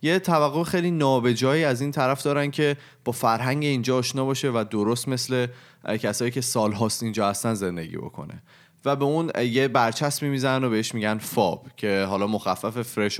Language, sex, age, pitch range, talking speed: Persian, male, 30-49, 110-135 Hz, 180 wpm